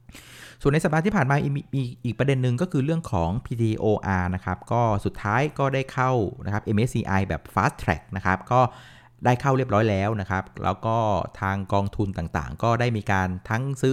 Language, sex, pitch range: Thai, male, 95-125 Hz